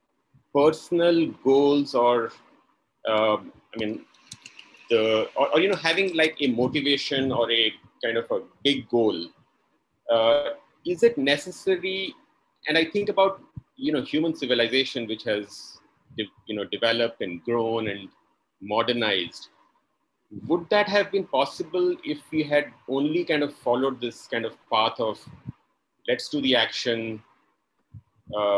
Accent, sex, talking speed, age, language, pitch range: Indian, male, 140 wpm, 30-49, English, 120-165 Hz